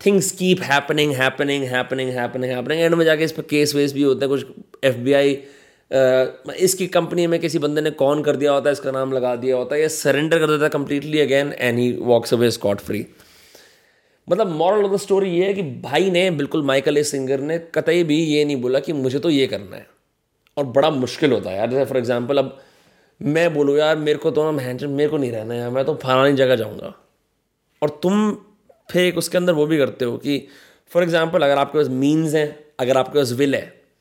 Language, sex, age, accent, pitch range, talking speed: English, male, 20-39, Indian, 135-165 Hz, 175 wpm